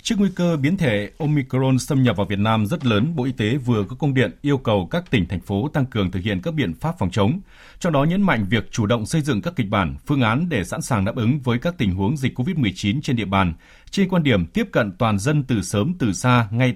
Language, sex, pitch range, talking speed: Vietnamese, male, 105-145 Hz, 275 wpm